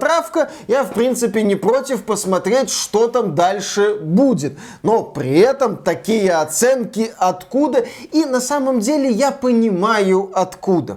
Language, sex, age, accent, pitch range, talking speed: Russian, male, 20-39, native, 180-235 Hz, 130 wpm